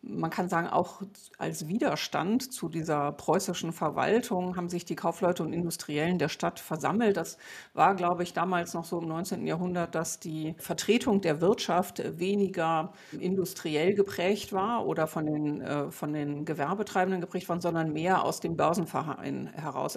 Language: German